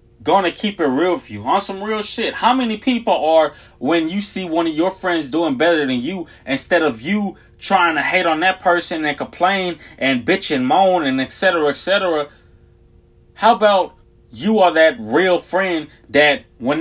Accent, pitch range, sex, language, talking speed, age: American, 145-190 Hz, male, English, 190 wpm, 20-39